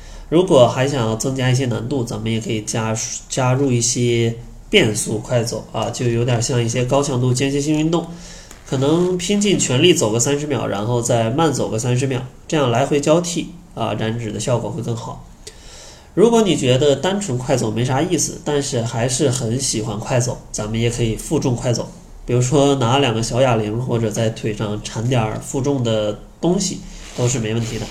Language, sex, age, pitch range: Chinese, male, 20-39, 110-140 Hz